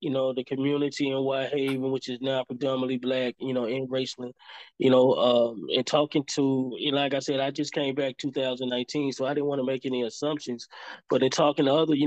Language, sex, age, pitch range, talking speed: English, male, 20-39, 130-140 Hz, 215 wpm